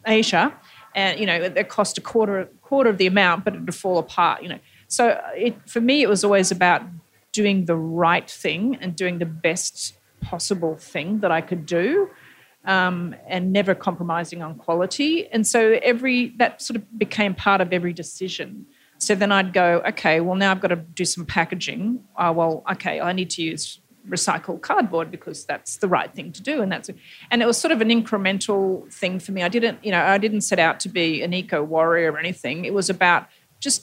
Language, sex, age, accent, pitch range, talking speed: English, female, 40-59, Australian, 175-220 Hz, 210 wpm